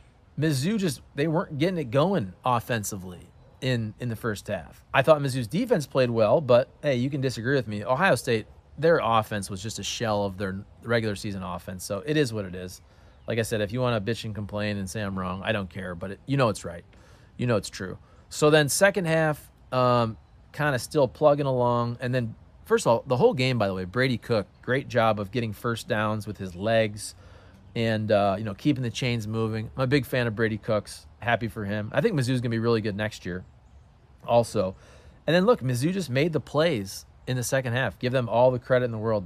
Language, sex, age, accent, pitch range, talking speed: English, male, 30-49, American, 105-130 Hz, 235 wpm